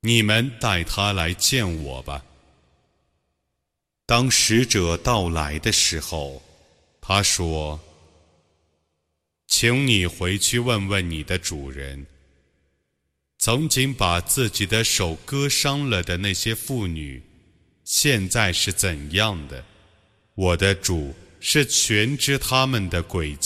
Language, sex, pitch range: Arabic, male, 80-110 Hz